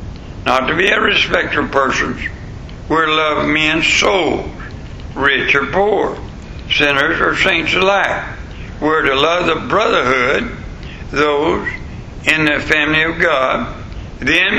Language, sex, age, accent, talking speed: English, male, 60-79, American, 135 wpm